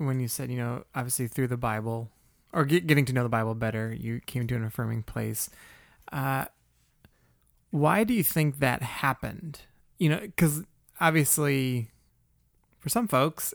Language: English